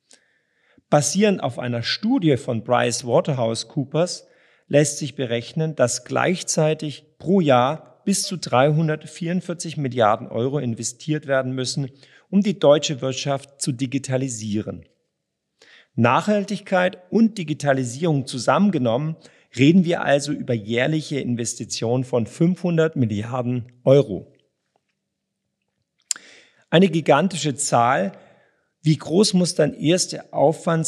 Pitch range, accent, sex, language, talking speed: 125-160 Hz, German, male, German, 105 wpm